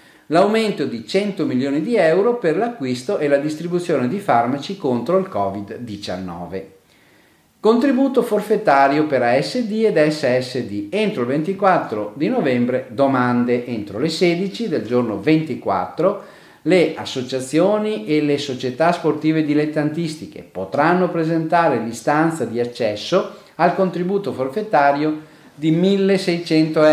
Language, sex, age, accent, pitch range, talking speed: Italian, male, 40-59, native, 125-185 Hz, 115 wpm